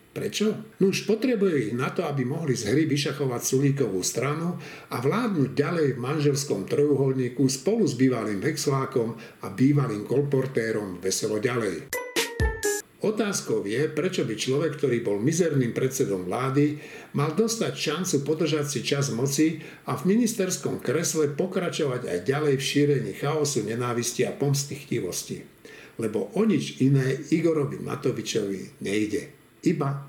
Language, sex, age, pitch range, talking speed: Slovak, male, 60-79, 130-160 Hz, 135 wpm